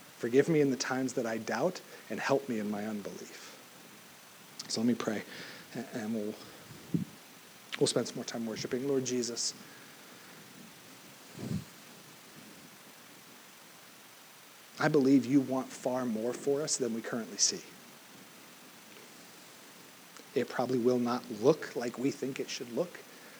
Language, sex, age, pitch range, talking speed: English, male, 40-59, 120-145 Hz, 130 wpm